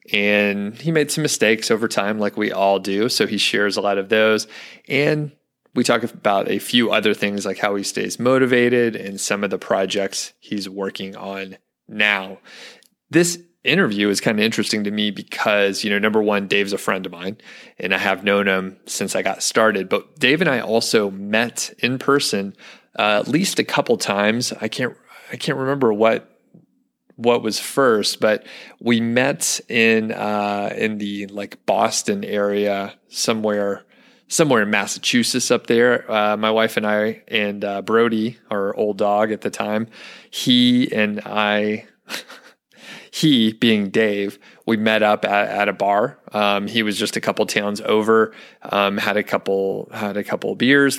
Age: 30-49